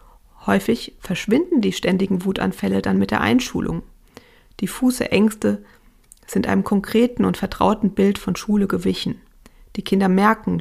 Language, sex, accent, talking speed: German, female, German, 130 wpm